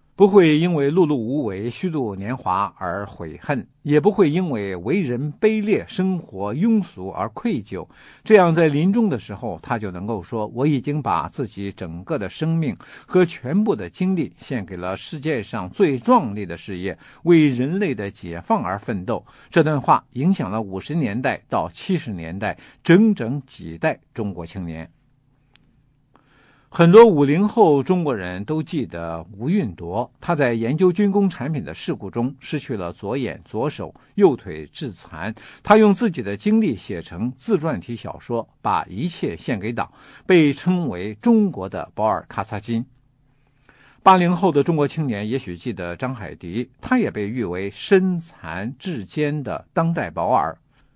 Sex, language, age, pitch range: male, English, 50-69, 105-170 Hz